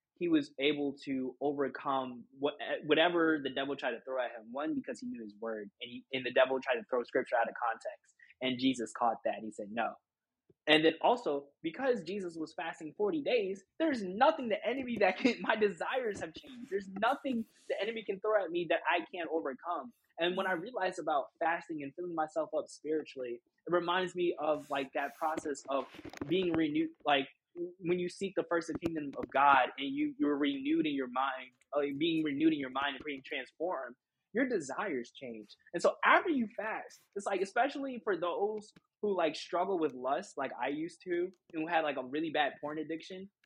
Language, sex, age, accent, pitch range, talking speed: English, male, 20-39, American, 145-215 Hz, 200 wpm